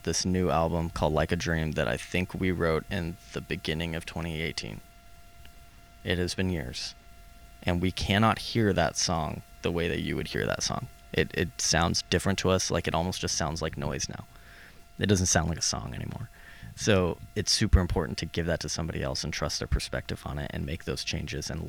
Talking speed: 215 wpm